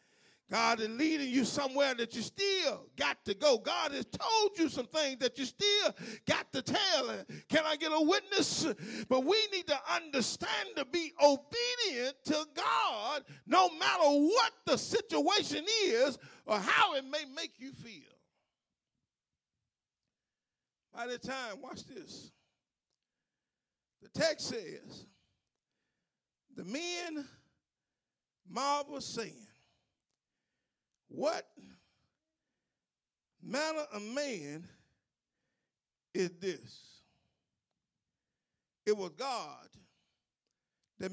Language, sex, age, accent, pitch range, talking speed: English, male, 50-69, American, 210-305 Hz, 105 wpm